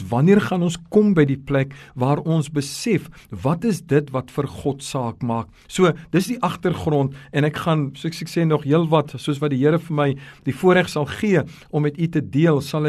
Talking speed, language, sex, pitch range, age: 215 wpm, English, male, 140-180 Hz, 50-69